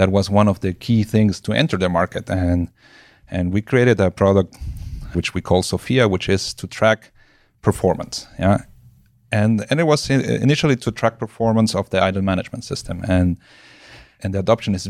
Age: 30-49